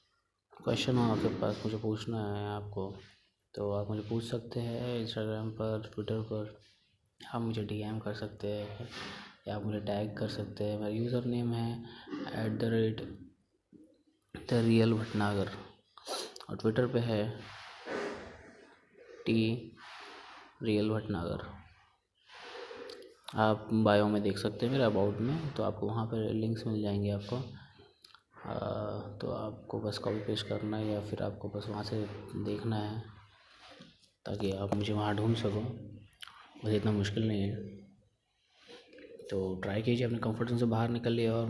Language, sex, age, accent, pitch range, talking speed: Hindi, male, 20-39, native, 105-115 Hz, 145 wpm